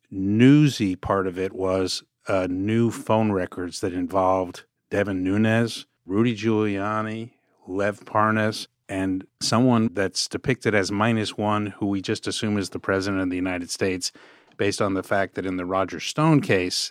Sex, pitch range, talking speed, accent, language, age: male, 95-115 Hz, 160 wpm, American, English, 50-69